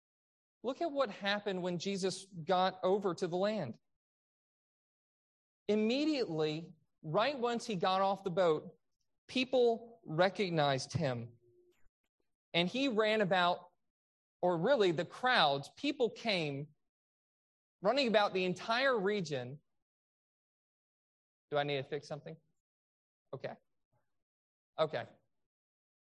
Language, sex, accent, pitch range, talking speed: English, male, American, 165-245 Hz, 105 wpm